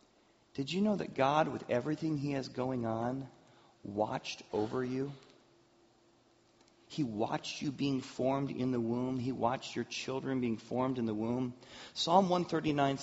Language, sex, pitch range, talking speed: English, male, 130-170 Hz, 150 wpm